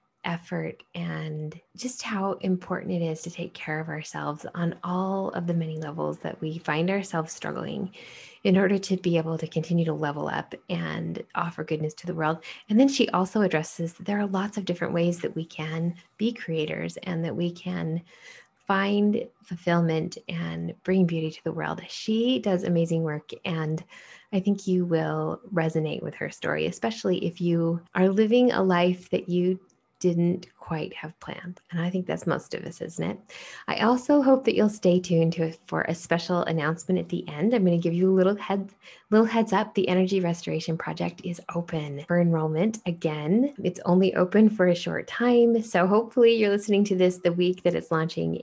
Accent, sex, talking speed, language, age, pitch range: American, female, 195 wpm, English, 20-39, 165-190 Hz